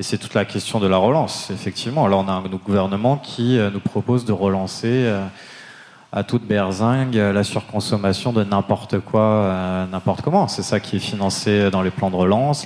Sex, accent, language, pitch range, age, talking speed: male, French, French, 95-115 Hz, 30-49, 185 wpm